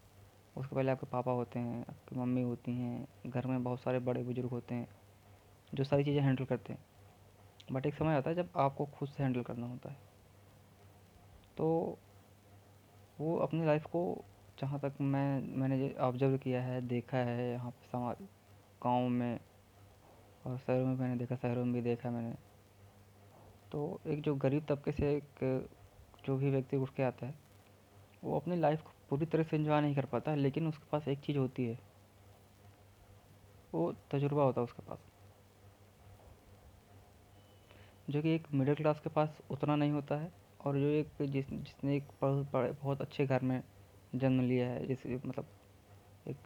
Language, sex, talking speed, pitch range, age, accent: Hindi, female, 170 wpm, 100-135 Hz, 20-39, native